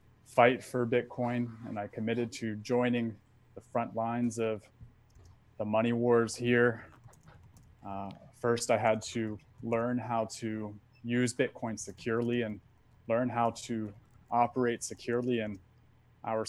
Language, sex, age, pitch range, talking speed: English, male, 20-39, 115-125 Hz, 125 wpm